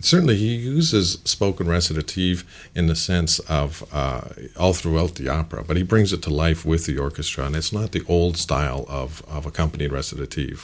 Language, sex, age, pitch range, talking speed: English, male, 50-69, 75-90 Hz, 185 wpm